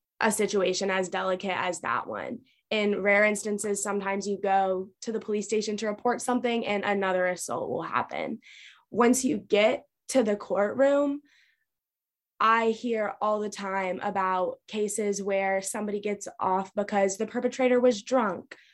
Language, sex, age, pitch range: English, female, 20-39, 195-245 Hz